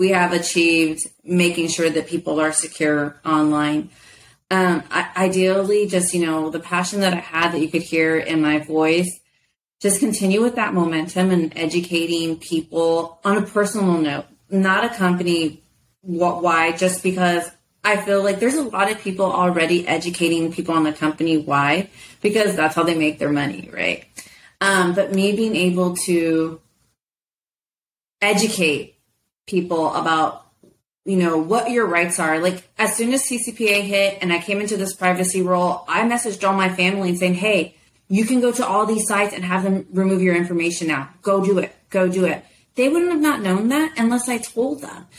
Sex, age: female, 30-49